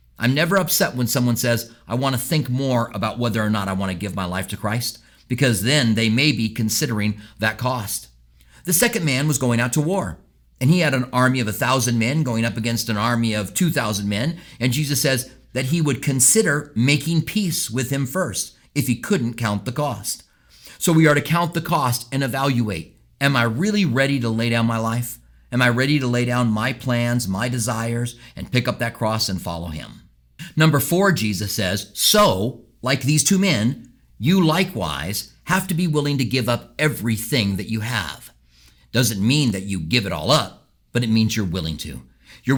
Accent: American